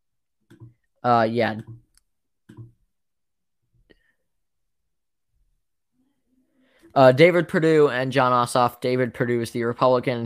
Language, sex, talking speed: English, male, 75 wpm